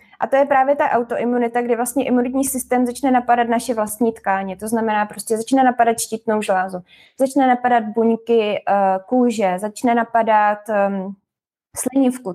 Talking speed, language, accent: 140 wpm, Czech, native